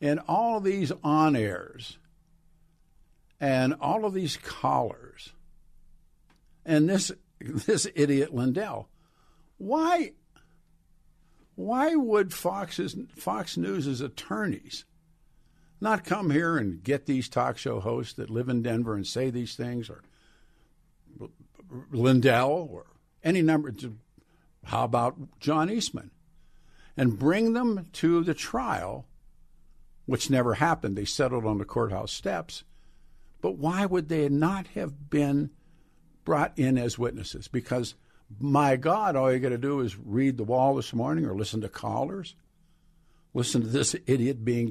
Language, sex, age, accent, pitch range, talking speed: English, male, 60-79, American, 125-170 Hz, 135 wpm